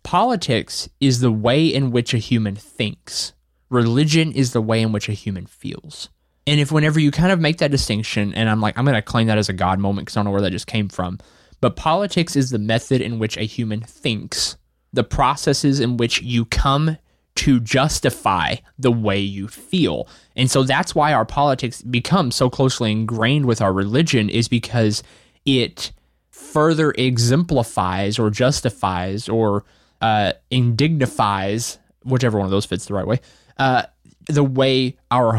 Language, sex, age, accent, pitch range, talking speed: English, male, 20-39, American, 105-140 Hz, 180 wpm